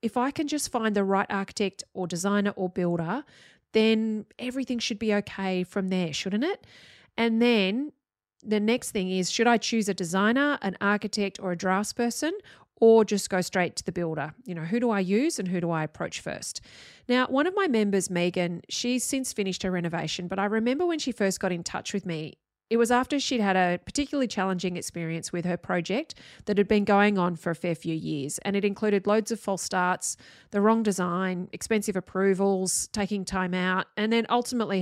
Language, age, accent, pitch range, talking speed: English, 40-59, Australian, 185-225 Hz, 205 wpm